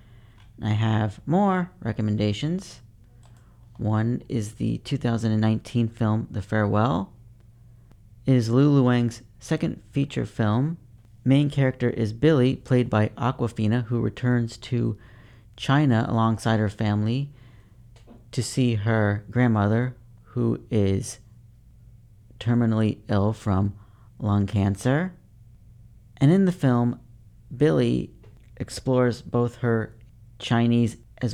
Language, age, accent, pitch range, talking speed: English, 40-59, American, 110-125 Hz, 100 wpm